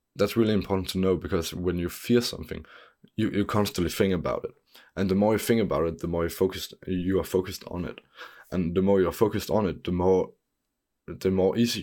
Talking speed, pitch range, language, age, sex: 215 wpm, 85-100 Hz, English, 20-39, male